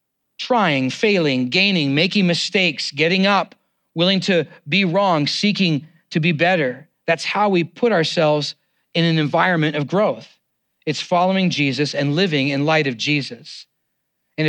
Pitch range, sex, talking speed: 145-190 Hz, male, 145 wpm